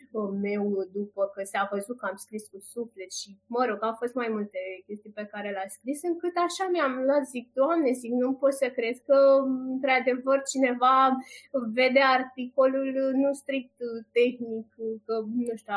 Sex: female